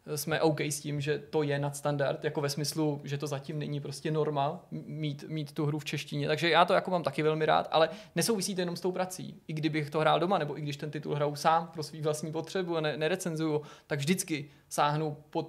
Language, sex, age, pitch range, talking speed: Czech, male, 20-39, 145-170 Hz, 235 wpm